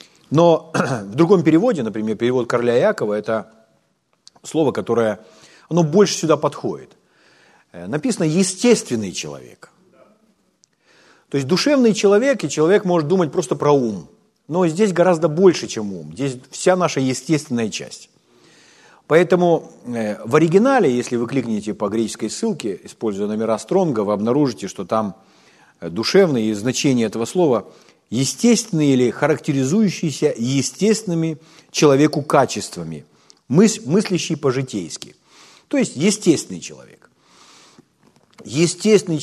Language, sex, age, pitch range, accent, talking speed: Ukrainian, male, 50-69, 120-190 Hz, native, 115 wpm